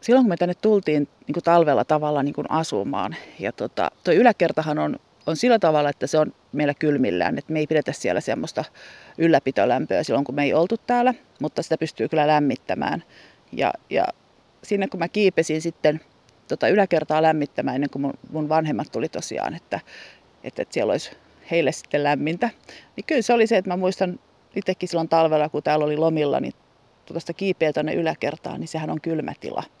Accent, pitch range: native, 150-185 Hz